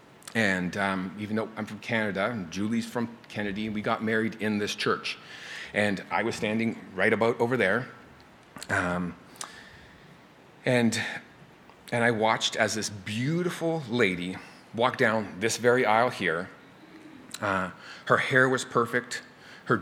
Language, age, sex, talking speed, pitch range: English, 30-49, male, 140 wpm, 105-120 Hz